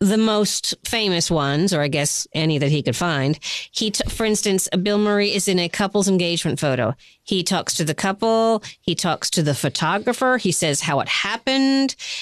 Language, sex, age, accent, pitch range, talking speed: English, female, 40-59, American, 165-225 Hz, 190 wpm